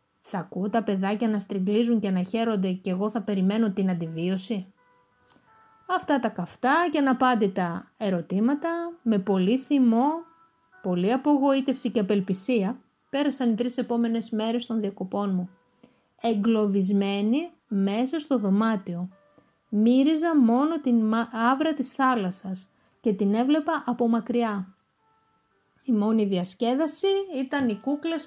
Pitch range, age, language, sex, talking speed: 200-260 Hz, 30-49, Greek, female, 120 wpm